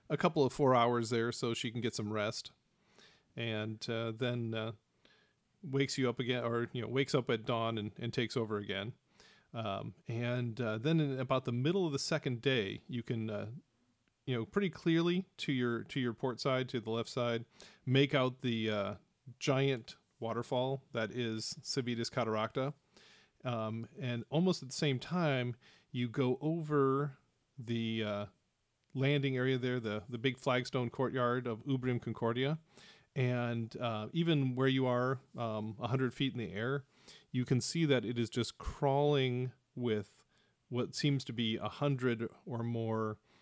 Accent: American